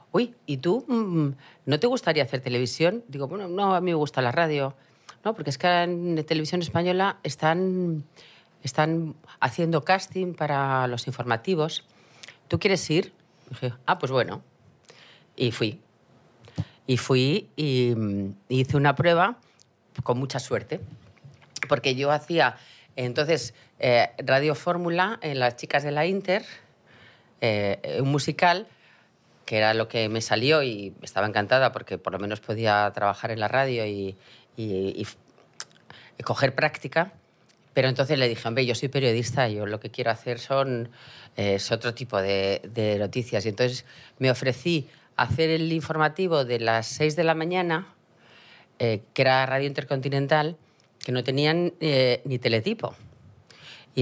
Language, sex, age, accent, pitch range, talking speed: Spanish, female, 40-59, Spanish, 120-160 Hz, 150 wpm